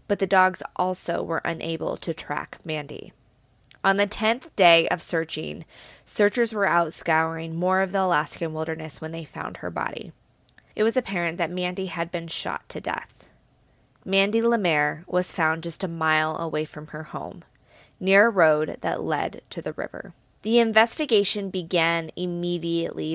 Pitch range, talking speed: 155-195 Hz, 160 wpm